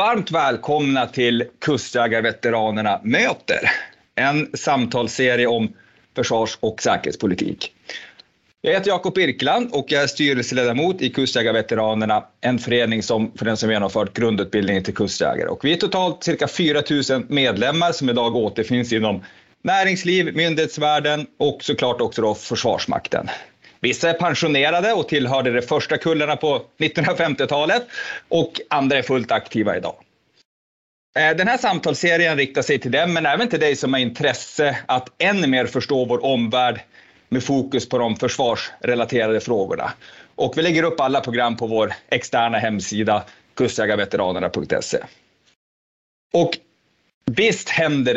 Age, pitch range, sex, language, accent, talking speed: 30-49, 115-150 Hz, male, Swedish, native, 130 wpm